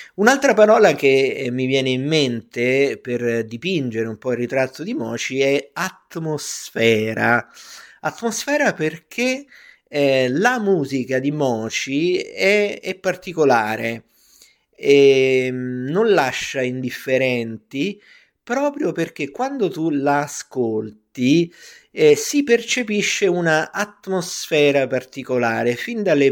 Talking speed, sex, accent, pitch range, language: 100 wpm, male, native, 125-175 Hz, Italian